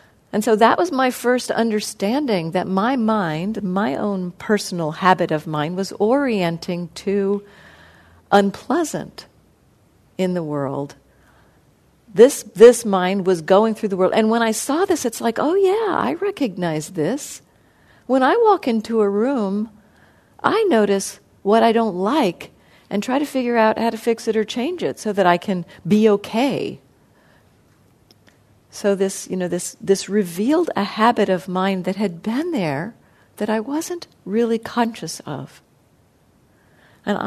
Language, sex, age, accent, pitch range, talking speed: English, female, 50-69, American, 180-230 Hz, 155 wpm